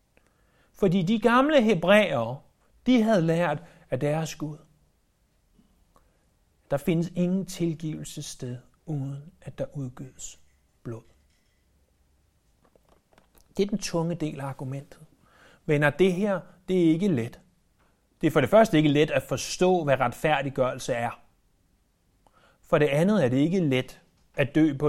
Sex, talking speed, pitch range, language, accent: male, 135 wpm, 140-210 Hz, Danish, native